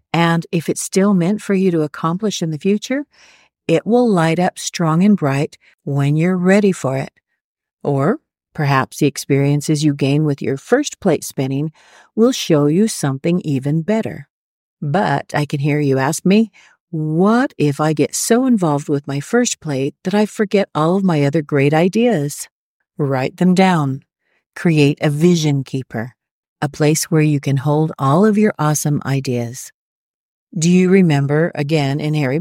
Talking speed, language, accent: 170 wpm, English, American